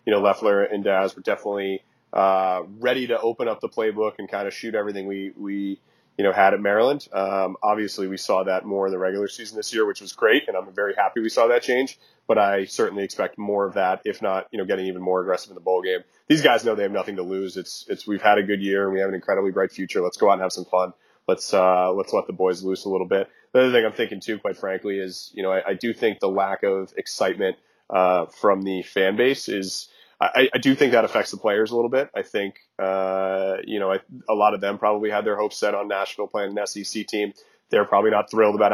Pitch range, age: 95-110 Hz, 30-49